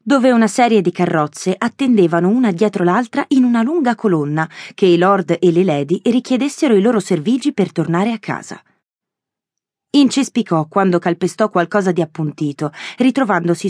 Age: 30-49